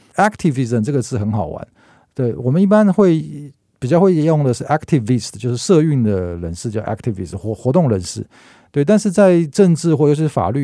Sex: male